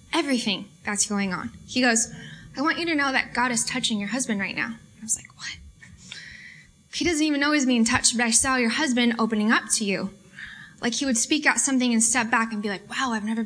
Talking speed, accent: 240 wpm, American